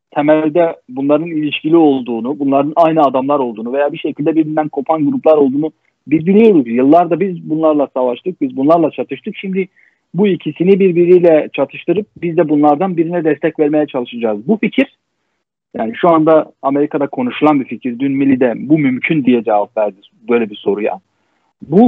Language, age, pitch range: Turkish, 40-59, 130-165 Hz